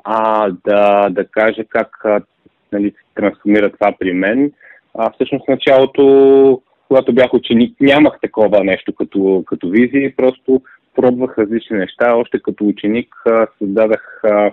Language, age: Bulgarian, 30-49